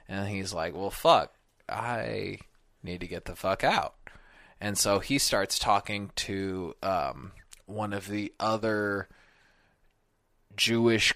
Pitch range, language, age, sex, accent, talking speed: 95-110 Hz, English, 20-39, male, American, 130 wpm